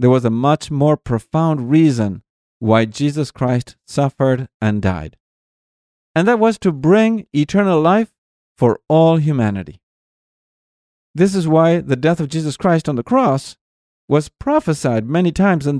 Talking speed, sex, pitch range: 150 wpm, male, 110-160 Hz